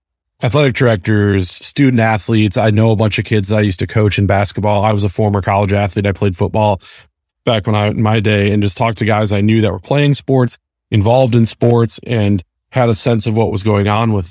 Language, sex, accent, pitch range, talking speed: English, male, American, 105-115 Hz, 230 wpm